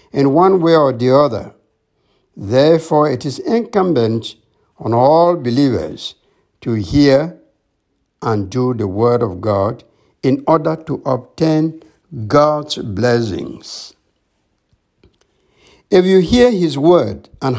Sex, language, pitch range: male, English, 120-175 Hz